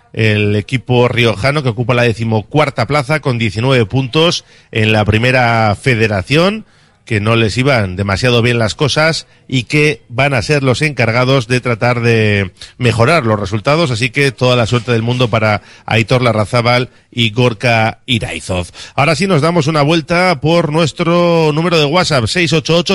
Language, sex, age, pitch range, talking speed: Spanish, male, 40-59, 115-155 Hz, 160 wpm